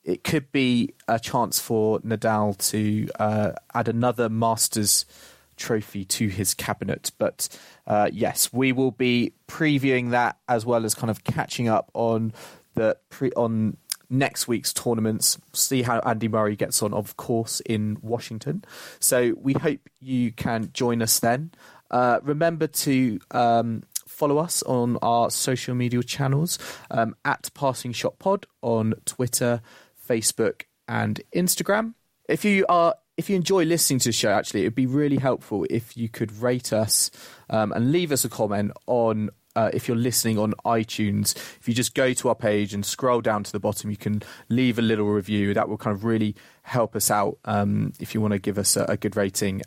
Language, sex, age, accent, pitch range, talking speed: English, male, 30-49, British, 105-130 Hz, 180 wpm